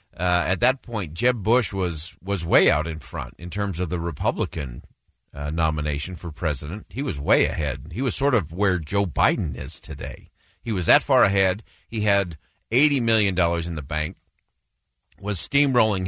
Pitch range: 80-105 Hz